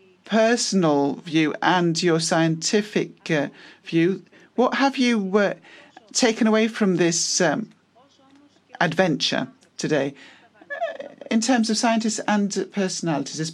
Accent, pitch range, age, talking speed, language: British, 170-225 Hz, 40-59, 115 wpm, Greek